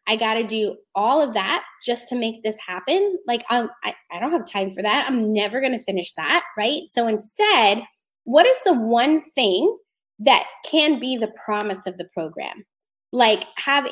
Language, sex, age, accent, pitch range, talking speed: English, female, 20-39, American, 210-280 Hz, 190 wpm